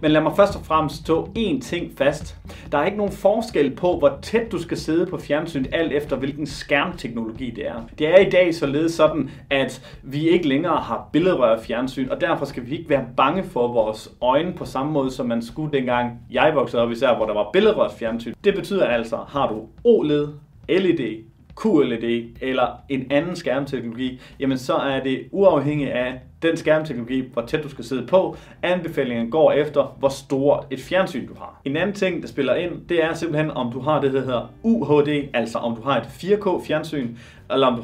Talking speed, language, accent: 205 wpm, Danish, native